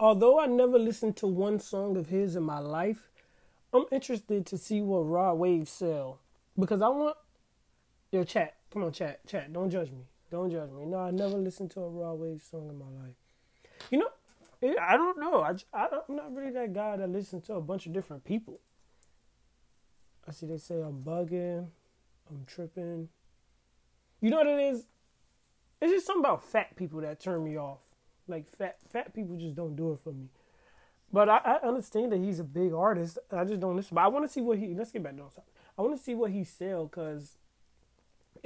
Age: 20-39